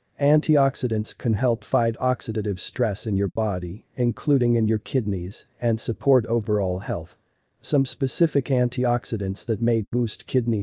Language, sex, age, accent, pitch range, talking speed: Italian, male, 40-59, American, 105-125 Hz, 135 wpm